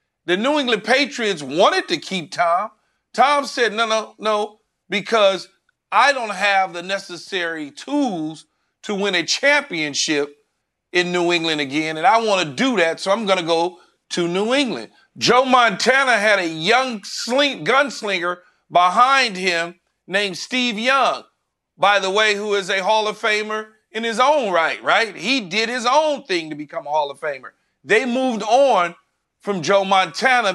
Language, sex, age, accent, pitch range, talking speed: English, male, 40-59, American, 180-250 Hz, 165 wpm